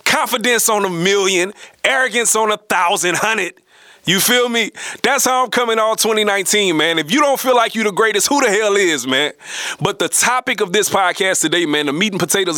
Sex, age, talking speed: male, 30-49, 210 wpm